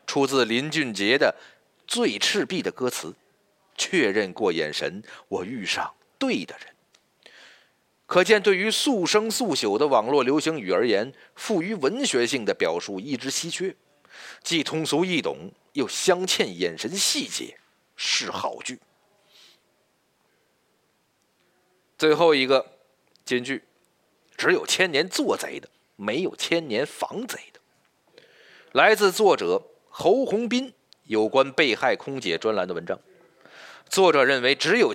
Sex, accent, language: male, native, Chinese